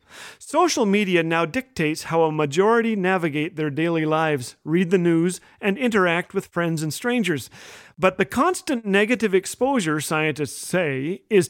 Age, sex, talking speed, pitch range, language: 40-59, male, 145 wpm, 160-230 Hz, English